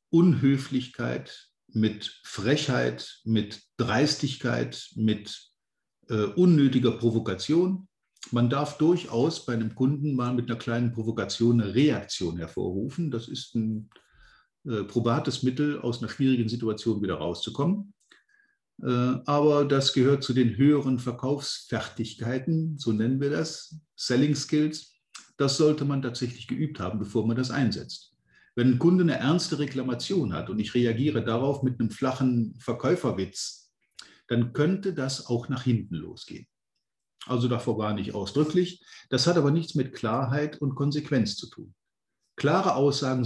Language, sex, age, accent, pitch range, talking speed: German, male, 50-69, German, 115-150 Hz, 135 wpm